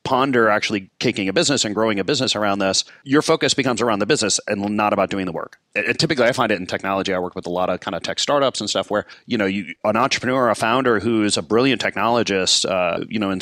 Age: 30-49